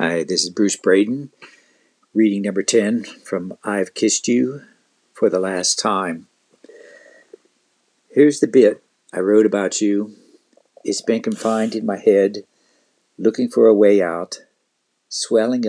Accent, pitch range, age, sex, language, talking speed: American, 105-145 Hz, 60-79, male, English, 135 wpm